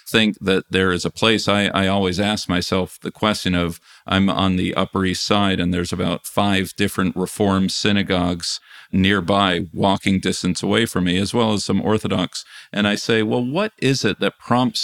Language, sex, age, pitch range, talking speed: English, male, 40-59, 95-105 Hz, 190 wpm